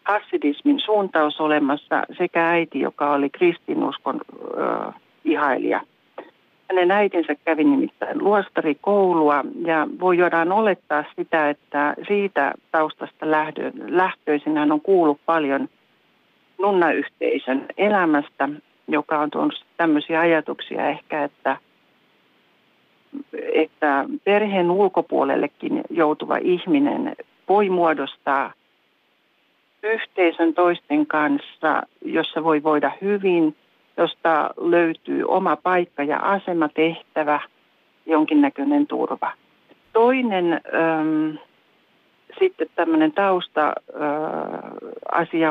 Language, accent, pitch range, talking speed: Finnish, native, 155-200 Hz, 80 wpm